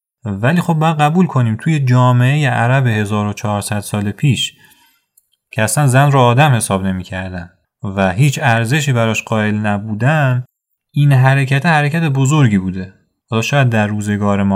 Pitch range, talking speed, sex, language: 110-150 Hz, 140 wpm, male, Persian